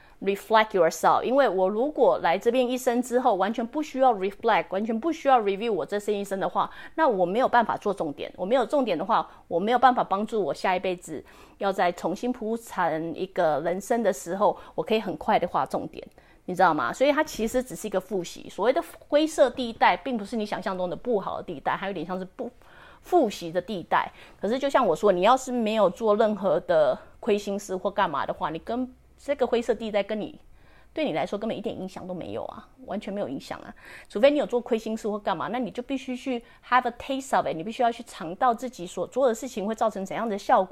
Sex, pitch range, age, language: female, 195-255 Hz, 30-49, English